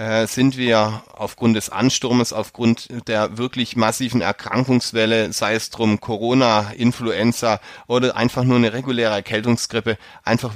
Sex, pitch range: male, 110-125 Hz